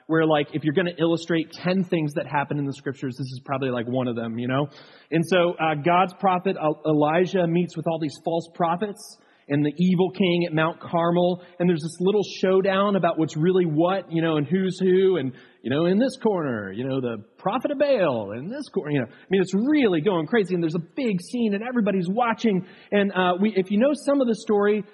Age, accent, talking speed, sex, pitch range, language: 30-49, American, 235 wpm, male, 145-195 Hz, English